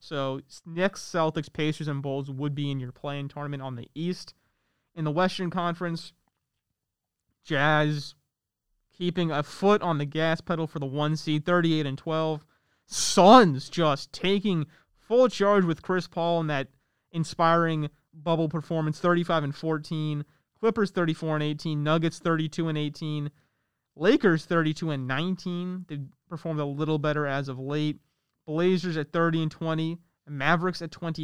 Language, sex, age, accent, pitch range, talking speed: English, male, 30-49, American, 145-170 Hz, 150 wpm